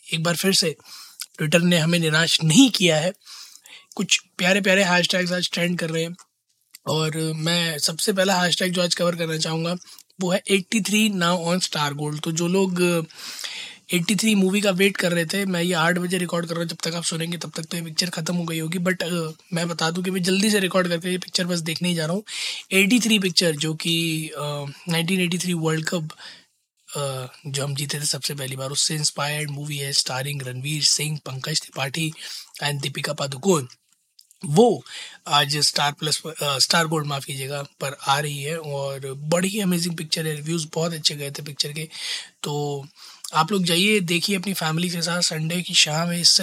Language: Hindi